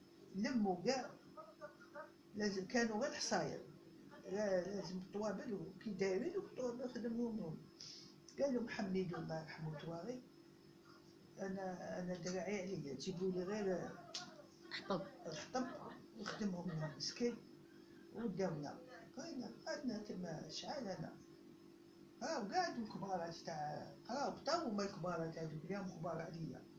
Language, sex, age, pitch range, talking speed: Arabic, female, 50-69, 175-240 Hz, 110 wpm